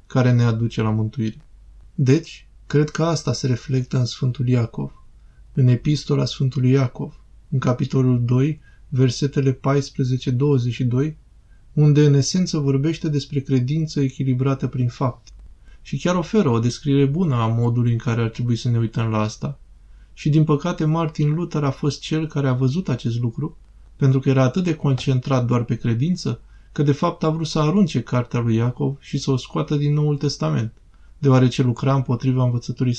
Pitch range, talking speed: 120-150 Hz, 165 wpm